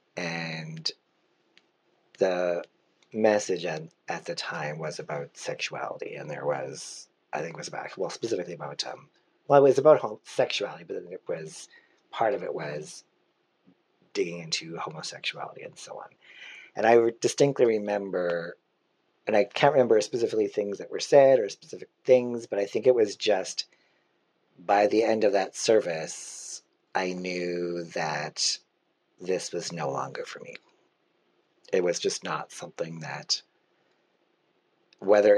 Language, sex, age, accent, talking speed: English, male, 40-59, American, 145 wpm